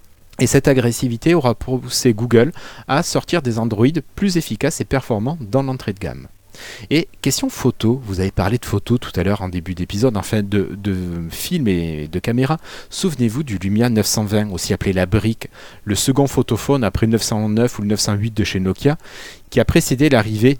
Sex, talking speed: male, 185 wpm